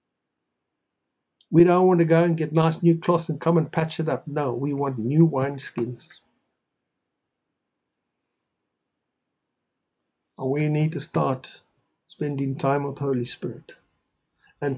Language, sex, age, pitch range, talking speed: English, male, 60-79, 140-165 Hz, 140 wpm